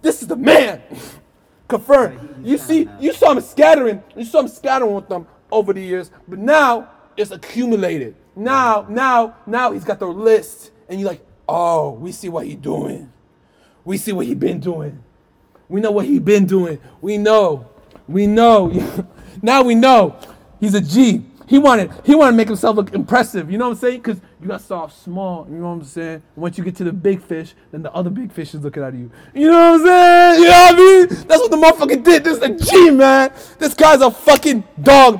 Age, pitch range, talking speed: 30-49, 185-250 Hz, 215 wpm